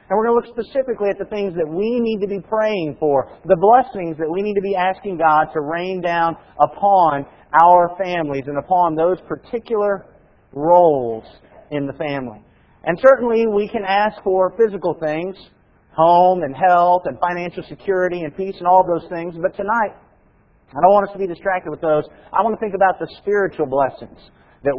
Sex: male